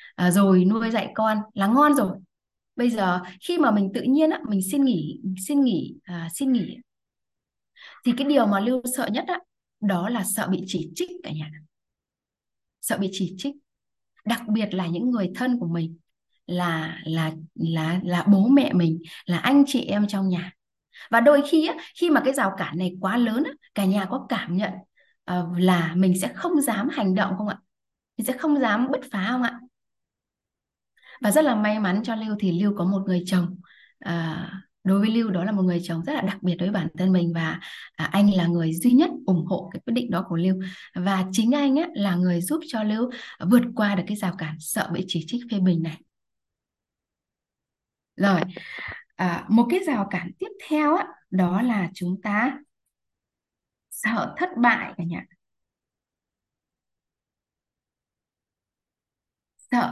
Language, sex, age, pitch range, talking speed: Vietnamese, female, 20-39, 180-245 Hz, 185 wpm